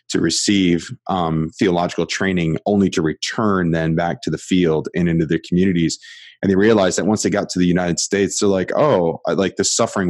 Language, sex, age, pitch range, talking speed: English, male, 20-39, 85-105 Hz, 200 wpm